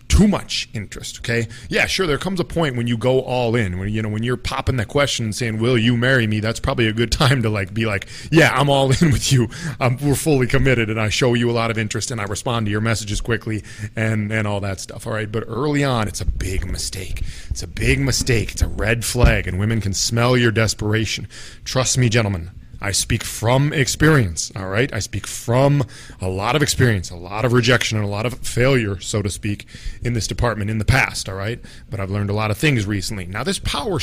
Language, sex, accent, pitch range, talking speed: English, male, American, 100-130 Hz, 245 wpm